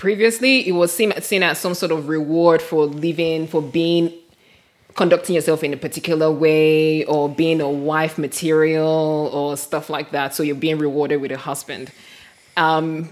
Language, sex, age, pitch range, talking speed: English, female, 20-39, 150-180 Hz, 170 wpm